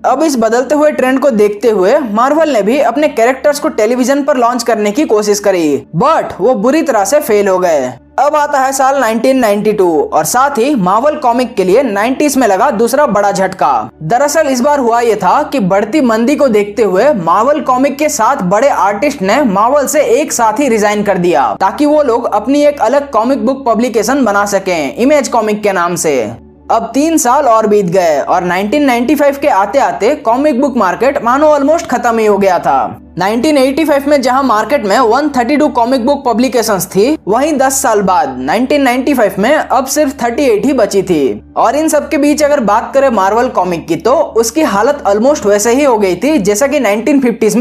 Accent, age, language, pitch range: native, 20-39, Hindi, 210-290 Hz